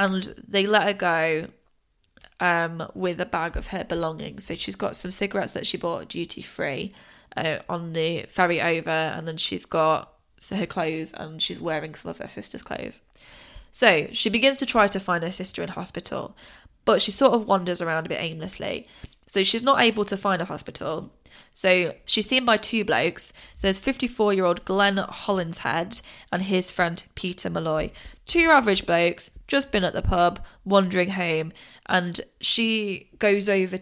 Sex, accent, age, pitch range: female, British, 10-29, 170-200 Hz